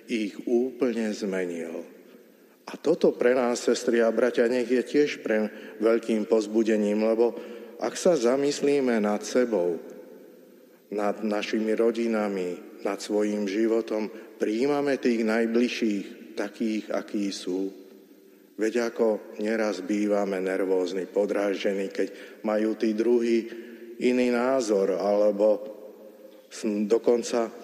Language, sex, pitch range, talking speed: Slovak, male, 105-125 Hz, 105 wpm